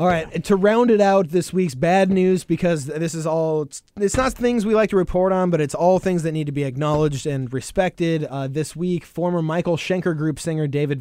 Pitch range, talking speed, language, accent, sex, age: 130-165 Hz, 235 wpm, English, American, male, 20-39